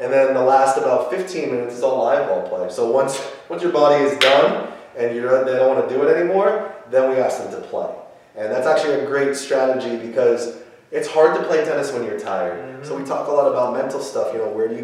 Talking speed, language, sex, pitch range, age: 250 wpm, English, male, 100-150 Hz, 20-39